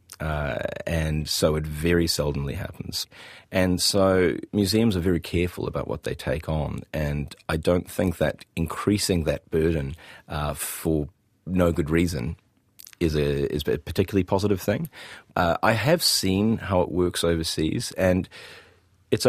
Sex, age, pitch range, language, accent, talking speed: male, 30-49, 75-95 Hz, English, Australian, 150 wpm